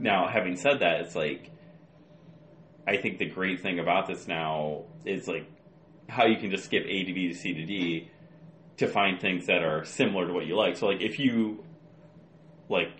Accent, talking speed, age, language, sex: American, 200 wpm, 30-49, English, male